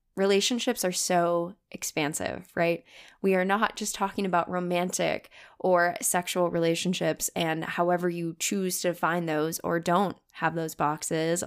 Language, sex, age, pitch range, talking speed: English, female, 10-29, 170-205 Hz, 140 wpm